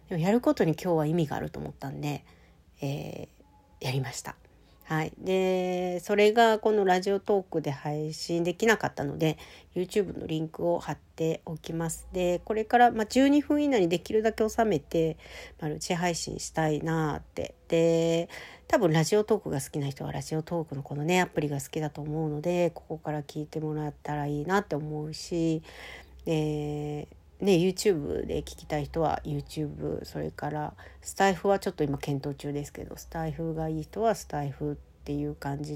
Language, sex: Japanese, female